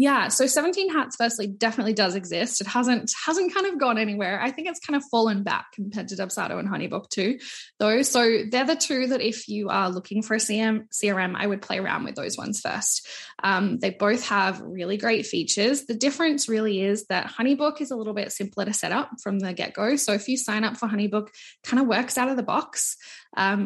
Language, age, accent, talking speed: English, 10-29, Australian, 225 wpm